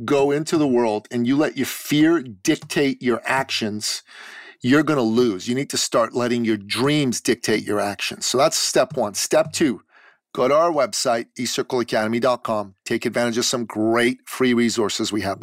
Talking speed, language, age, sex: 180 wpm, English, 40-59, male